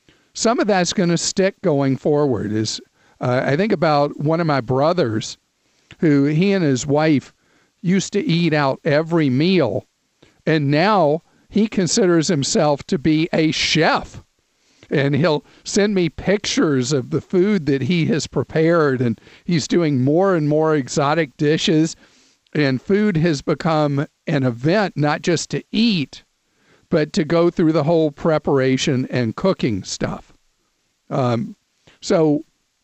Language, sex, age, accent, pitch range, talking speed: English, male, 50-69, American, 140-180 Hz, 145 wpm